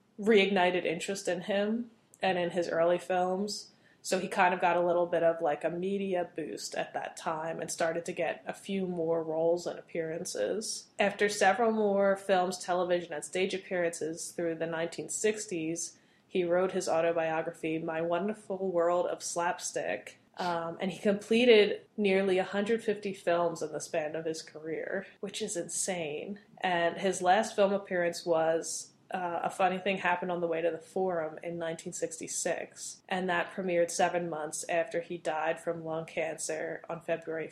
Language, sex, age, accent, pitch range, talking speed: English, female, 20-39, American, 165-195 Hz, 165 wpm